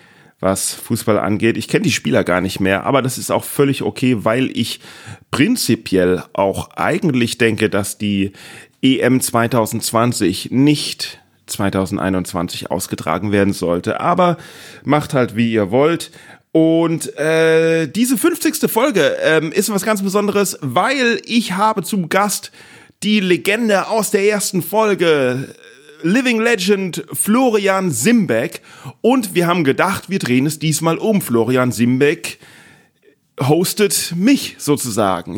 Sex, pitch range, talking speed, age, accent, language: male, 120-185 Hz, 130 wpm, 40-59, German, German